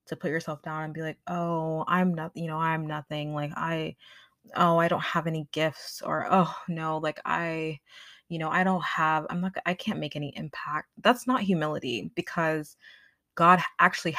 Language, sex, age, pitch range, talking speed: English, female, 20-39, 150-170 Hz, 190 wpm